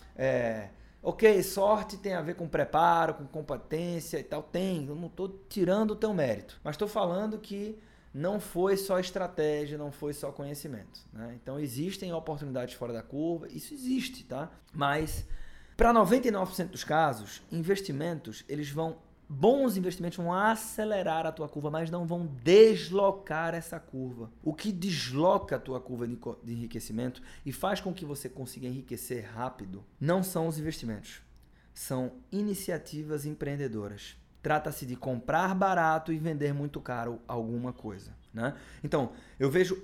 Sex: male